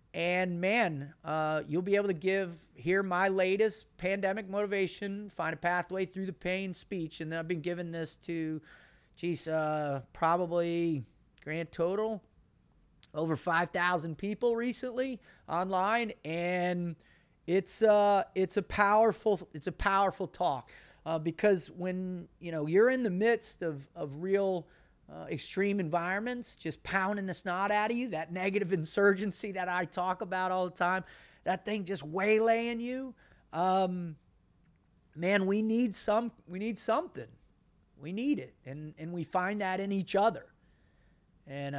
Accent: American